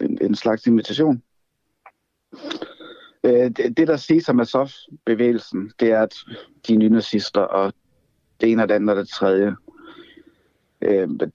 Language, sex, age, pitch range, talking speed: Danish, male, 60-79, 110-140 Hz, 150 wpm